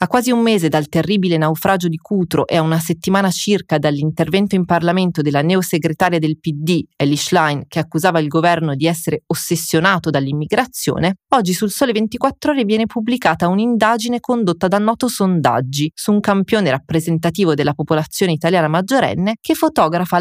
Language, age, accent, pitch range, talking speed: Italian, 30-49, native, 160-220 Hz, 155 wpm